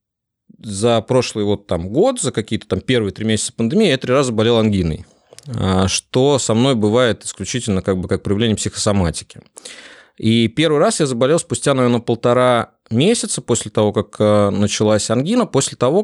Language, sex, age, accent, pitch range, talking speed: Russian, male, 20-39, native, 95-125 Hz, 155 wpm